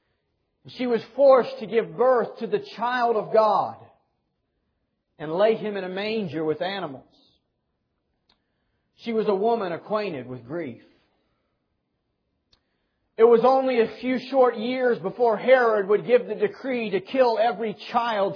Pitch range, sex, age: 190-235 Hz, male, 40-59